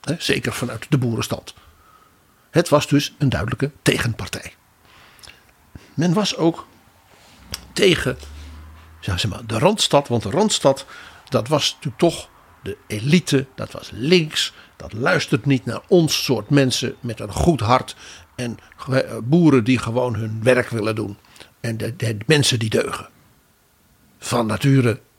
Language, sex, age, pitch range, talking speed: Dutch, male, 60-79, 110-155 Hz, 145 wpm